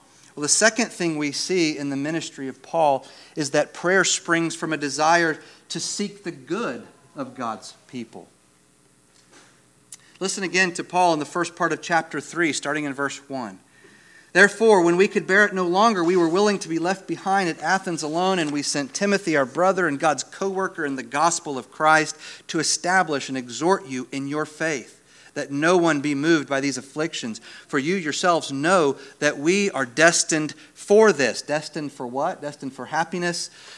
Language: English